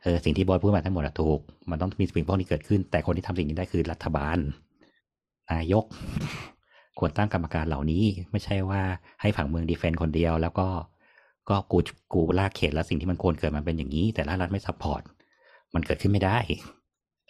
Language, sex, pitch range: Thai, male, 75-95 Hz